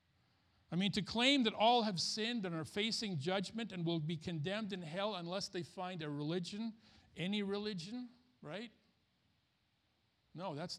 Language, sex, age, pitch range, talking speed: English, male, 50-69, 160-210 Hz, 155 wpm